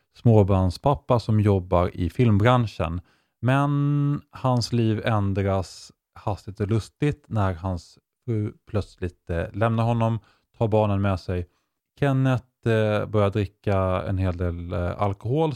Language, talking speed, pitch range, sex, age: English, 110 wpm, 95-120 Hz, male, 30-49